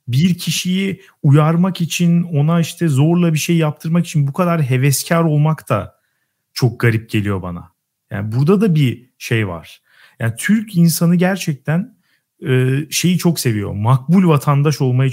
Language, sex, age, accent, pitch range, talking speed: Turkish, male, 40-59, native, 130-180 Hz, 145 wpm